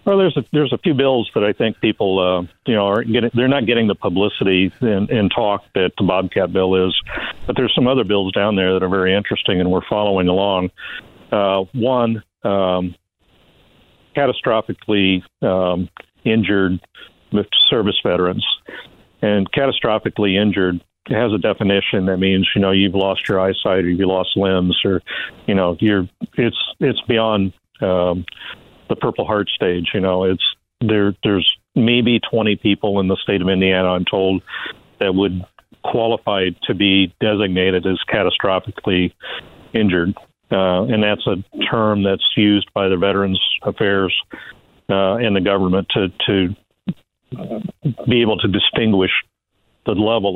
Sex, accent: male, American